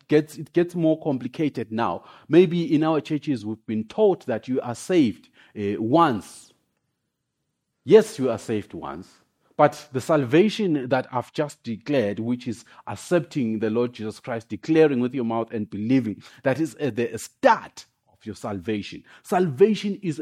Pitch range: 115-165 Hz